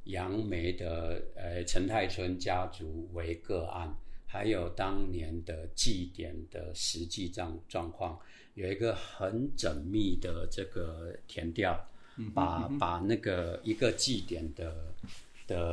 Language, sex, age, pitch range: Chinese, male, 50-69, 85-95 Hz